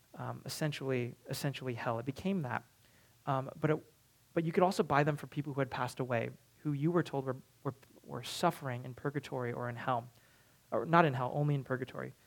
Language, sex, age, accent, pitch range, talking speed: English, male, 30-49, American, 130-160 Hz, 205 wpm